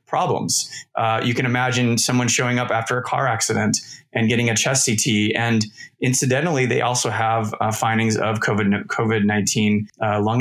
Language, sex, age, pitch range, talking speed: English, male, 30-49, 110-125 Hz, 165 wpm